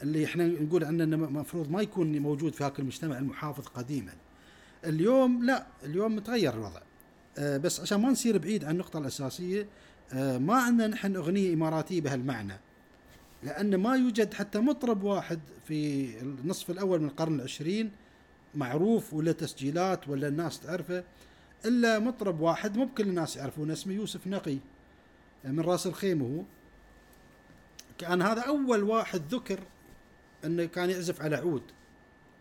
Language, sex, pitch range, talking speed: Arabic, male, 140-200 Hz, 135 wpm